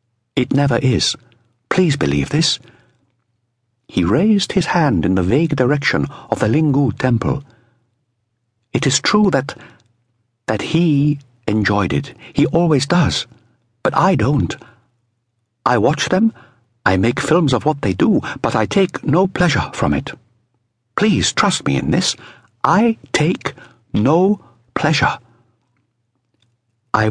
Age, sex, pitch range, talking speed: 60-79, male, 115-150 Hz, 130 wpm